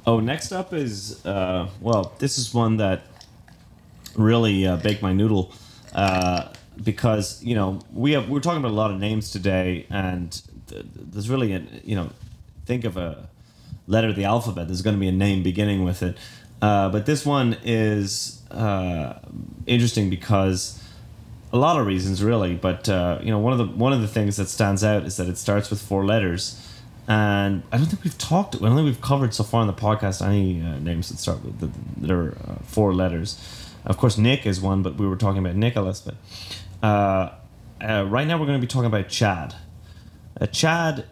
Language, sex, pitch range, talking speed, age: English, male, 95-120 Hz, 205 wpm, 30-49